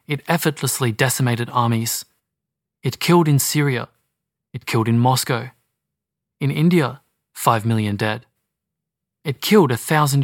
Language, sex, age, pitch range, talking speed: English, male, 20-39, 120-150 Hz, 125 wpm